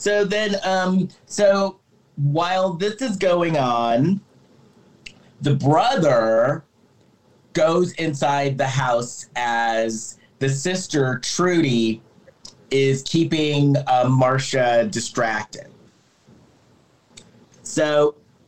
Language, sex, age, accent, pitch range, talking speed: English, male, 40-59, American, 135-190 Hz, 80 wpm